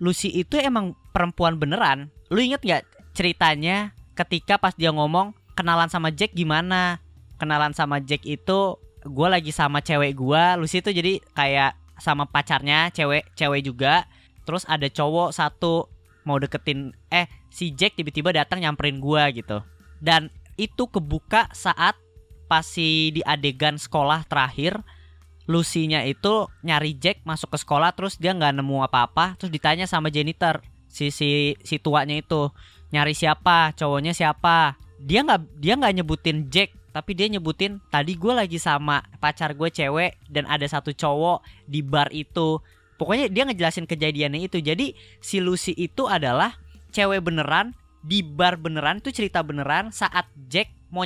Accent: native